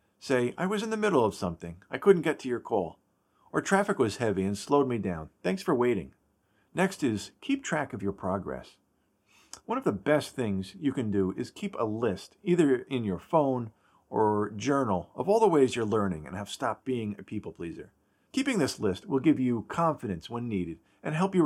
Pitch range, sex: 95-150 Hz, male